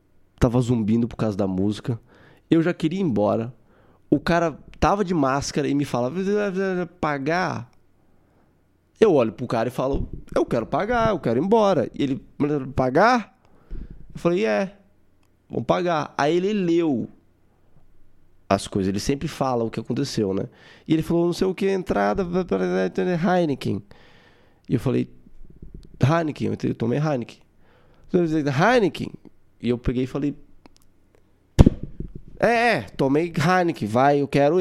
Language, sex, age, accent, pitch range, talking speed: Portuguese, male, 20-39, Brazilian, 100-165 Hz, 140 wpm